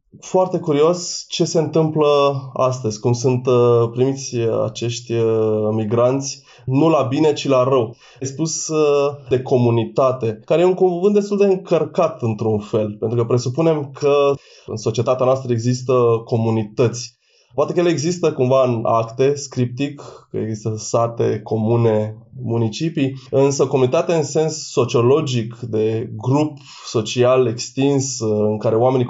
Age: 20-39